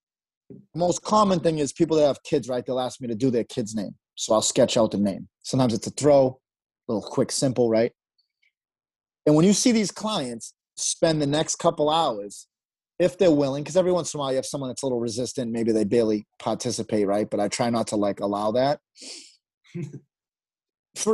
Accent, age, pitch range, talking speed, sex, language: American, 30-49, 125-170 Hz, 210 wpm, male, English